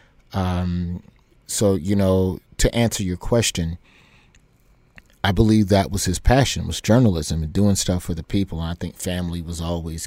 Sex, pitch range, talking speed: male, 90-110 Hz, 160 wpm